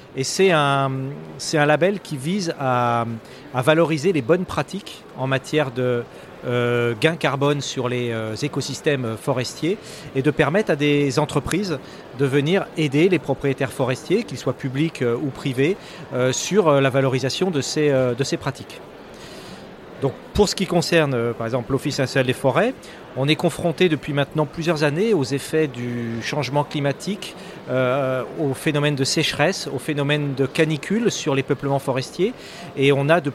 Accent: French